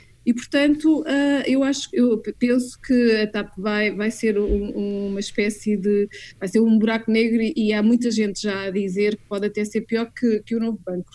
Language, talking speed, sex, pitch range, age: Portuguese, 205 wpm, female, 205-245 Hz, 20-39